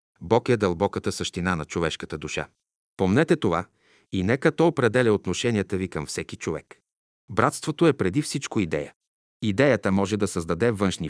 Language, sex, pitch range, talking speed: Bulgarian, male, 90-120 Hz, 150 wpm